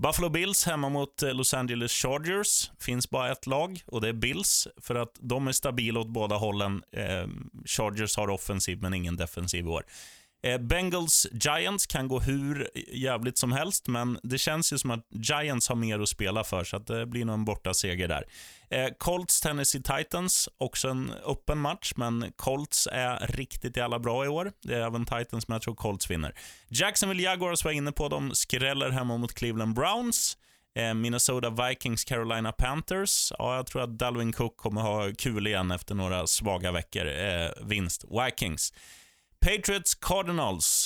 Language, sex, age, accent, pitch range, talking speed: Swedish, male, 20-39, native, 105-140 Hz, 155 wpm